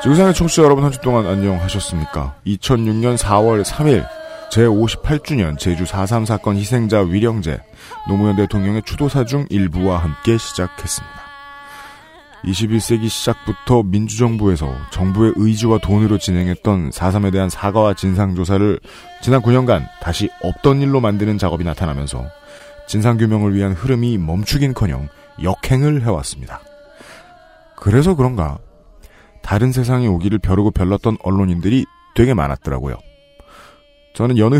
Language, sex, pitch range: Korean, male, 95-130 Hz